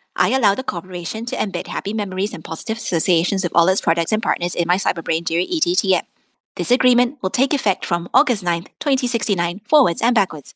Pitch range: 185-260 Hz